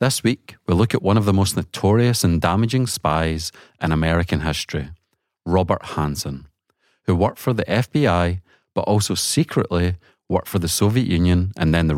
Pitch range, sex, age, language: 85-105 Hz, male, 30-49, English